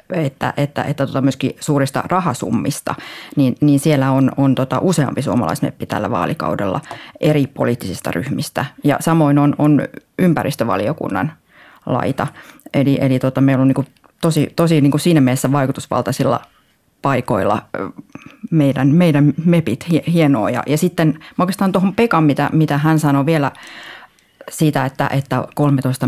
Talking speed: 135 wpm